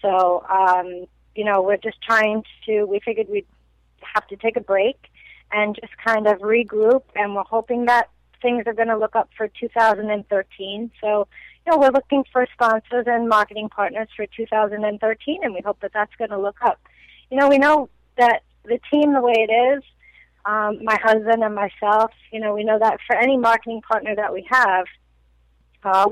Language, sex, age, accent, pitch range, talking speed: English, female, 30-49, American, 200-230 Hz, 190 wpm